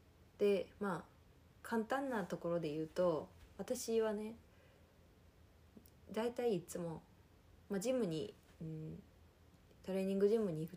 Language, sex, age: Japanese, female, 20-39